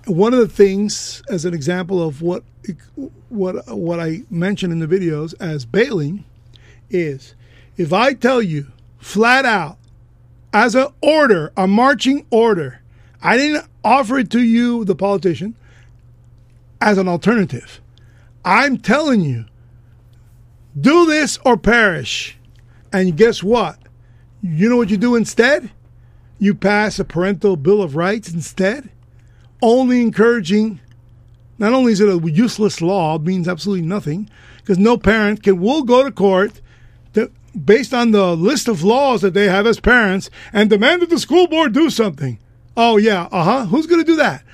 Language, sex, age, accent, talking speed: English, male, 50-69, American, 155 wpm